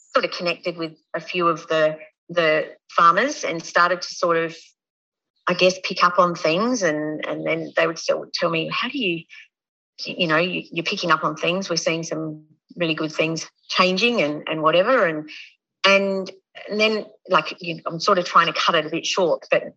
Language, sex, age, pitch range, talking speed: English, female, 40-59, 160-190 Hz, 205 wpm